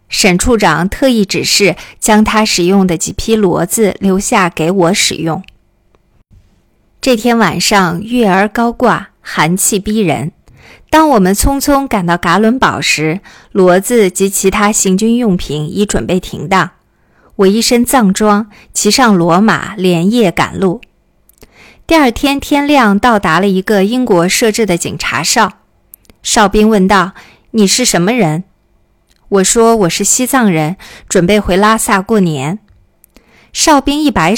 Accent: native